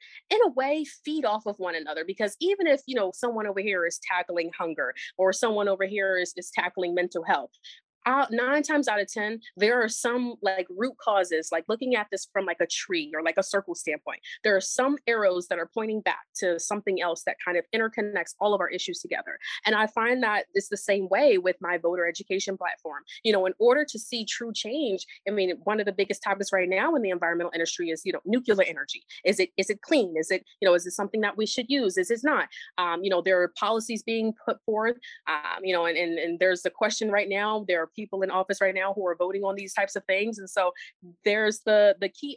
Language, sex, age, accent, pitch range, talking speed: English, female, 30-49, American, 180-220 Hz, 245 wpm